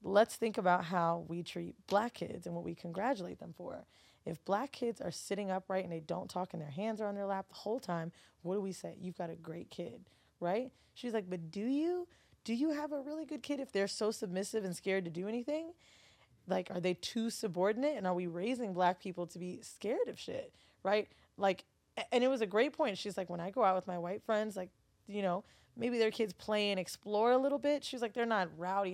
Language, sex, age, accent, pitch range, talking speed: English, female, 20-39, American, 185-240 Hz, 240 wpm